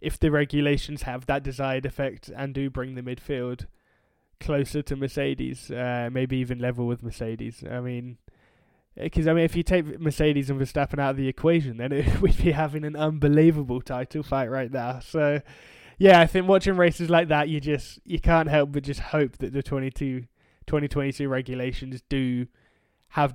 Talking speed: 175 wpm